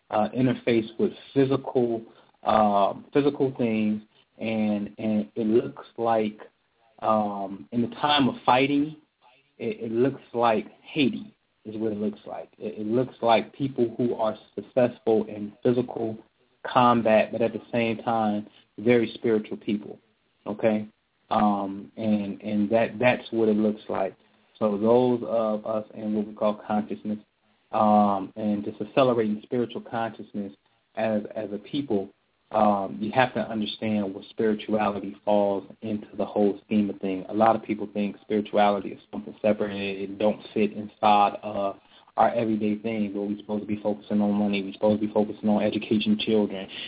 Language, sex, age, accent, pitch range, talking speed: English, male, 20-39, American, 105-115 Hz, 160 wpm